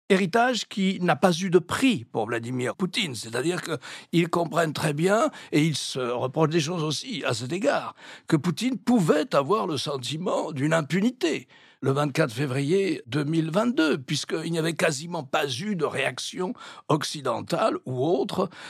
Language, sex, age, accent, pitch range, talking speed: French, male, 60-79, French, 140-195 Hz, 160 wpm